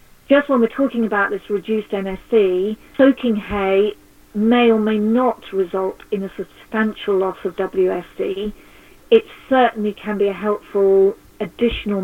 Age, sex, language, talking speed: 40-59, female, English, 140 wpm